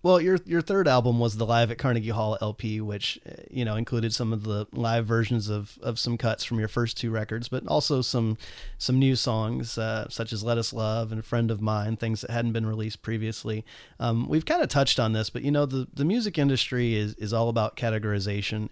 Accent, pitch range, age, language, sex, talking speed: American, 110-125 Hz, 30-49, English, male, 230 wpm